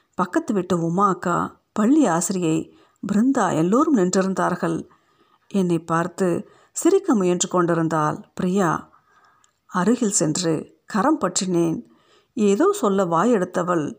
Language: Tamil